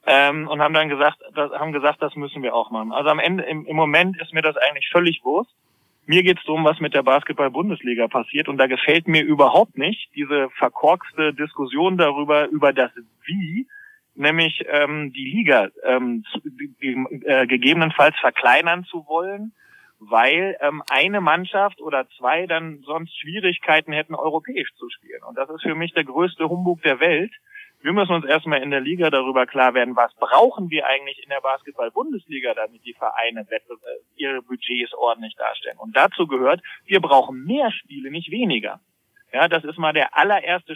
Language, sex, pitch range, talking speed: German, male, 135-175 Hz, 180 wpm